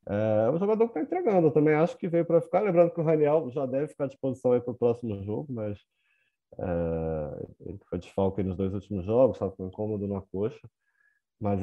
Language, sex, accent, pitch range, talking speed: Portuguese, male, Brazilian, 100-125 Hz, 215 wpm